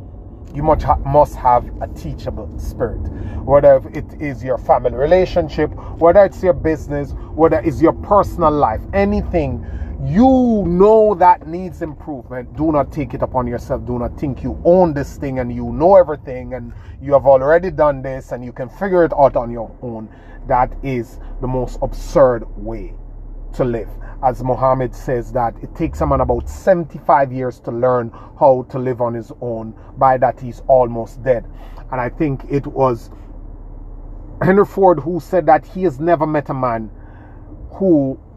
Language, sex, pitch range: English, male, 105-150 Hz